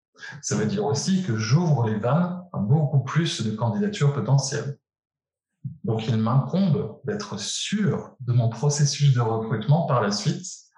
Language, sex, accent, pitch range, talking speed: French, male, French, 115-150 Hz, 150 wpm